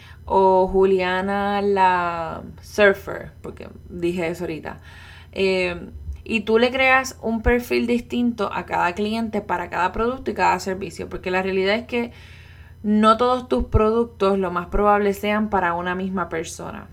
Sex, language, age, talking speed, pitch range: female, Spanish, 20-39, 150 wpm, 175-215 Hz